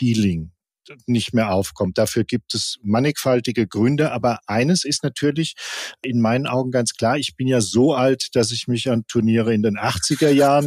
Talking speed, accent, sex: 175 wpm, German, male